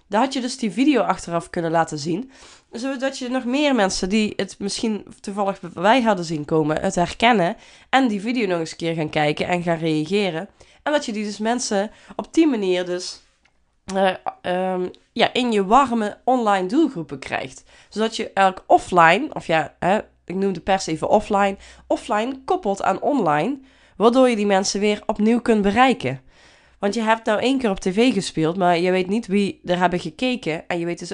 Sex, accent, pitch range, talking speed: female, Dutch, 175-230 Hz, 190 wpm